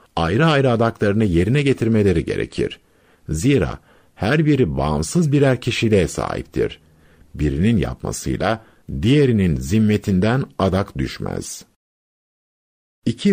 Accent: native